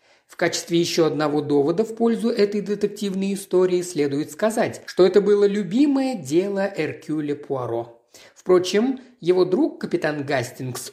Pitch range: 140-205 Hz